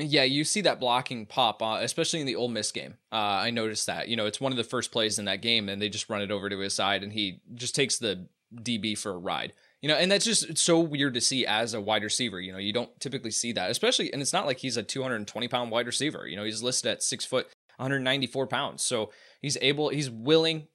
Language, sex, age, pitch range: English, male, 20-39, 115-150 Hz